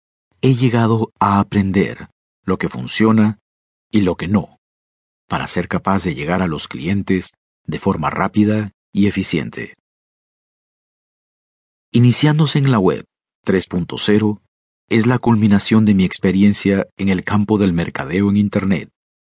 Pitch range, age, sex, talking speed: 90-110 Hz, 50-69, male, 130 wpm